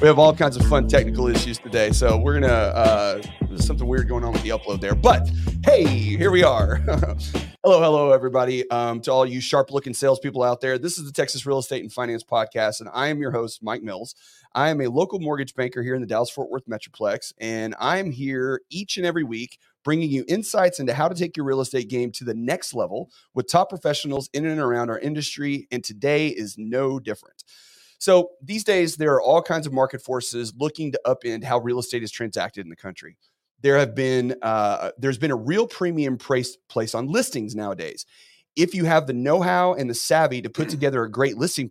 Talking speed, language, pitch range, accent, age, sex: 215 wpm, English, 120-155 Hz, American, 30-49, male